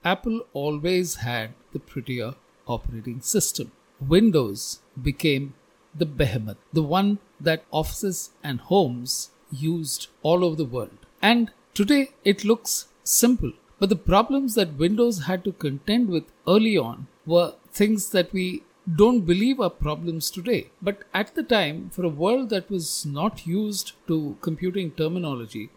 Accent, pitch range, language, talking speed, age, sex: Indian, 145-200 Hz, English, 140 wpm, 50-69, male